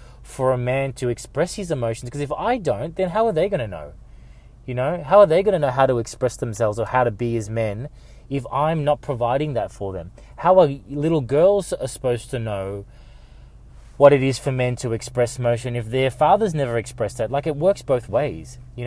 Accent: Australian